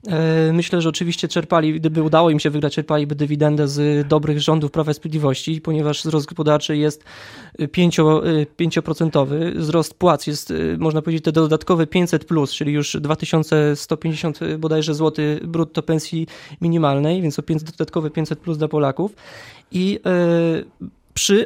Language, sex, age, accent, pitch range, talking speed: Polish, male, 20-39, native, 155-185 Hz, 140 wpm